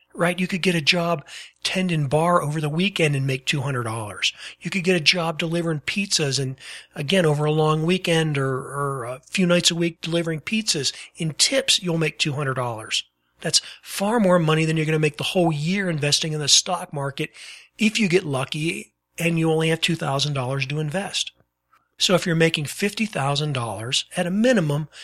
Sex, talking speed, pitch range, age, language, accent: male, 185 wpm, 140-180 Hz, 40-59, English, American